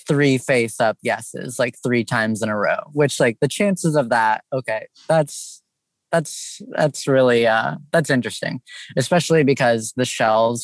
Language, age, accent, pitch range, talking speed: English, 20-39, American, 110-130 Hz, 160 wpm